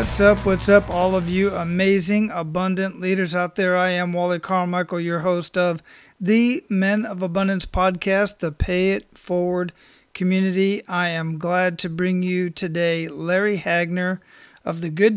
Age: 40-59